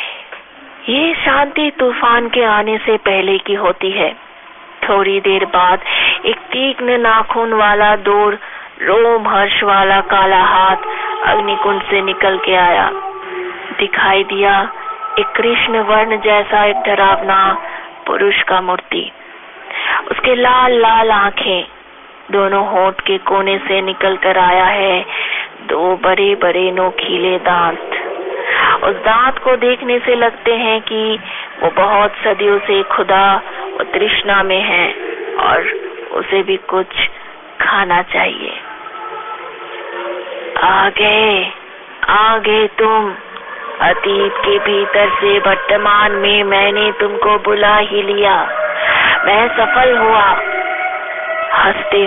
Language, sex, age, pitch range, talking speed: Hindi, female, 20-39, 195-275 Hz, 105 wpm